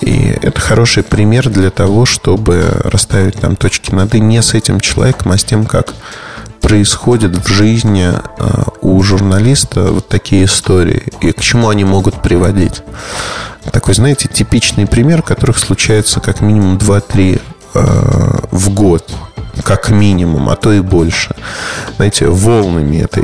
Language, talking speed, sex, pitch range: Russian, 140 wpm, male, 100-120 Hz